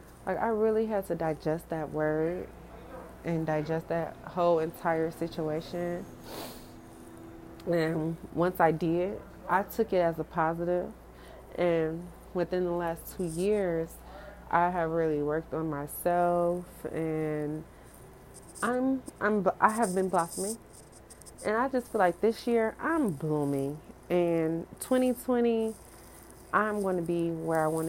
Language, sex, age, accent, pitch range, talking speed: English, female, 30-49, American, 160-195 Hz, 130 wpm